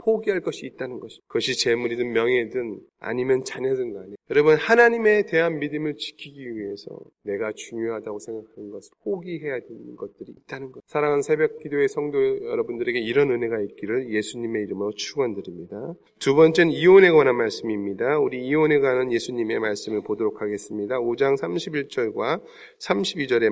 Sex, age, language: male, 30-49, Korean